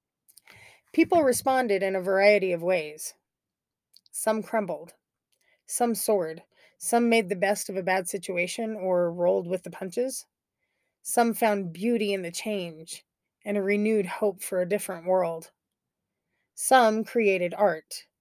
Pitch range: 185-225 Hz